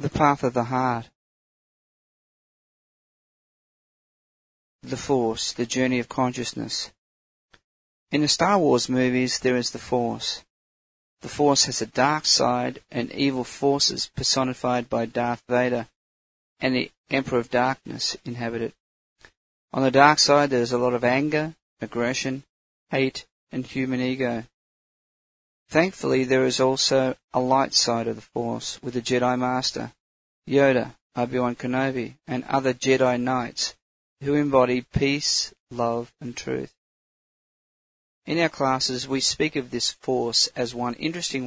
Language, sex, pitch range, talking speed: English, male, 120-135 Hz, 135 wpm